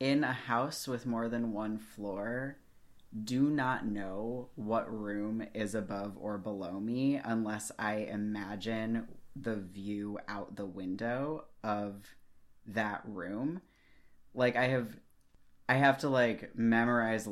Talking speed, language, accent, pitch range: 130 wpm, English, American, 105-125 Hz